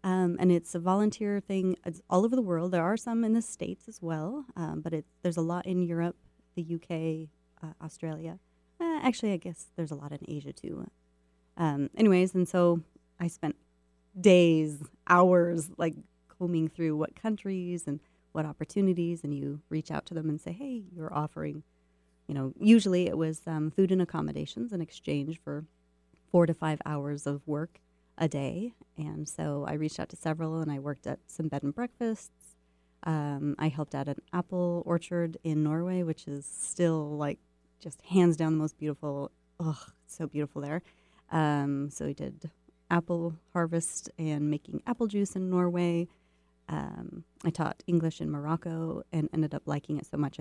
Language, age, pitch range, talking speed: English, 30-49, 145-180 Hz, 175 wpm